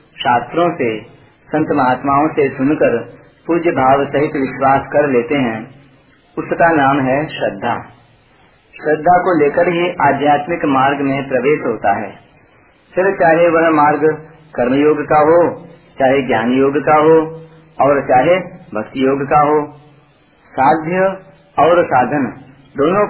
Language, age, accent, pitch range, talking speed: Hindi, 40-59, native, 140-170 Hz, 130 wpm